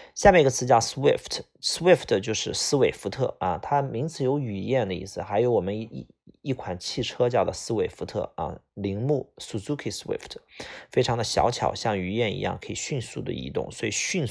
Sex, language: male, Chinese